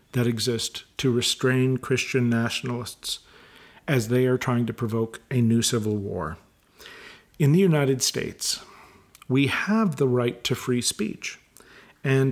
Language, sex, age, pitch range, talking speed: English, male, 50-69, 125-150 Hz, 135 wpm